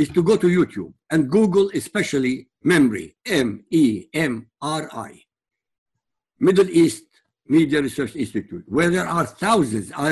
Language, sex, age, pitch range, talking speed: English, male, 60-79, 150-210 Hz, 120 wpm